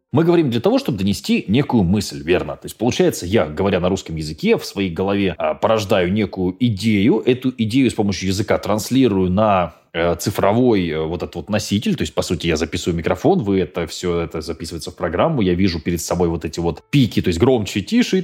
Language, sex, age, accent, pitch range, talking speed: Russian, male, 20-39, native, 90-125 Hz, 205 wpm